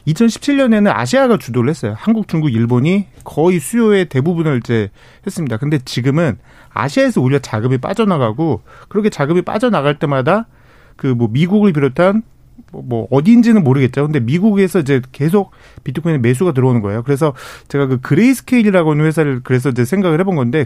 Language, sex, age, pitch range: Korean, male, 30-49, 130-185 Hz